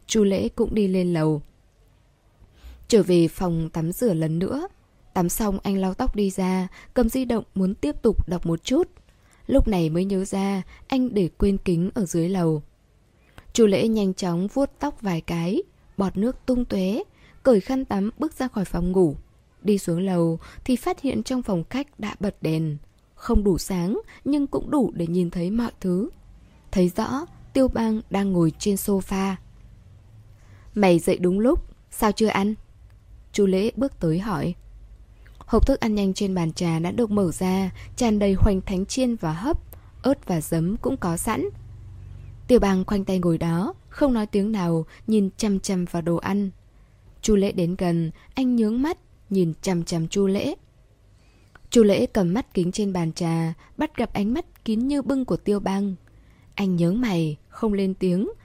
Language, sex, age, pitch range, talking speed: Vietnamese, female, 20-39, 170-220 Hz, 185 wpm